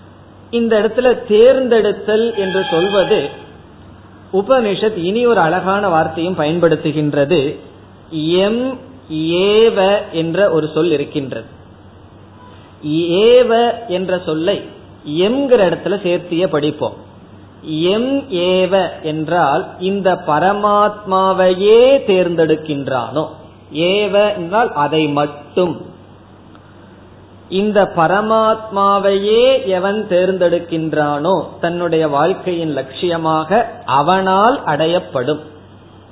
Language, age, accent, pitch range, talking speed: Tamil, 20-39, native, 150-200 Hz, 70 wpm